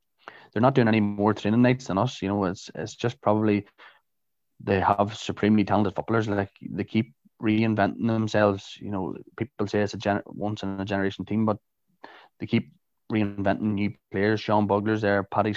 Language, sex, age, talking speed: English, male, 20-39, 180 wpm